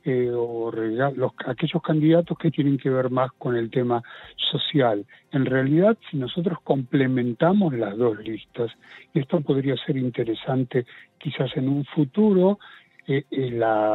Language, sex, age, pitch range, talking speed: Spanish, male, 60-79, 125-155 Hz, 140 wpm